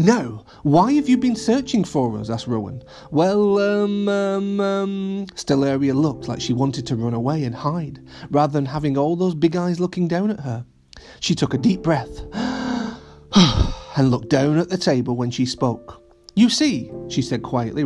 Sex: male